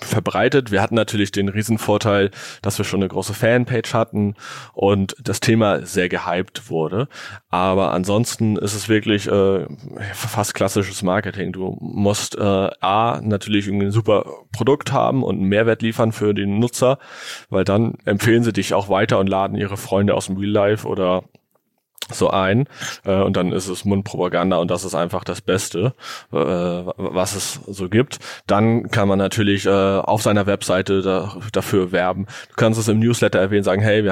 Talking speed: 175 wpm